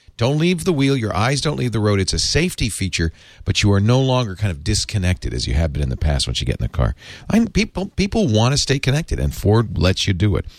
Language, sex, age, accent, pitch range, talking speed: English, male, 50-69, American, 95-125 Hz, 270 wpm